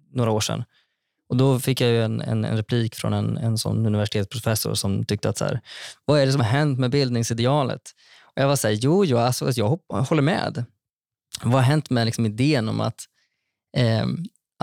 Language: Swedish